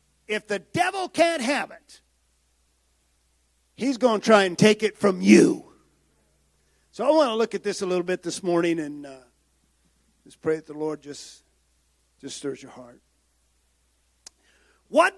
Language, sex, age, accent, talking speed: English, male, 50-69, American, 160 wpm